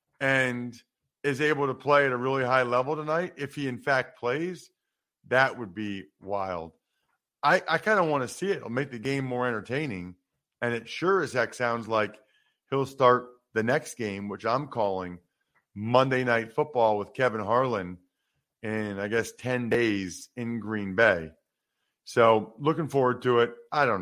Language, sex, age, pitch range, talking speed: English, male, 40-59, 100-135 Hz, 175 wpm